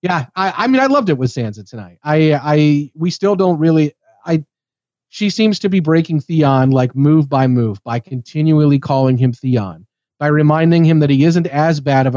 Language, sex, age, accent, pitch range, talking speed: English, male, 40-59, American, 130-160 Hz, 200 wpm